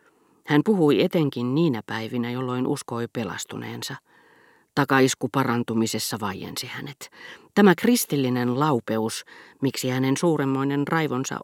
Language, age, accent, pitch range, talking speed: Finnish, 40-59, native, 115-145 Hz, 100 wpm